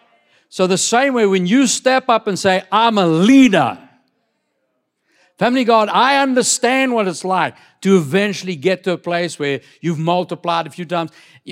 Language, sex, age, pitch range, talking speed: English, male, 60-79, 140-210 Hz, 165 wpm